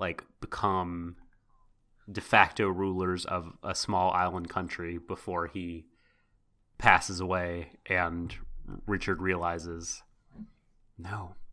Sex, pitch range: male, 85-105 Hz